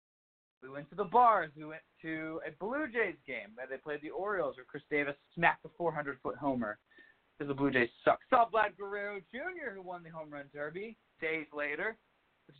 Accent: American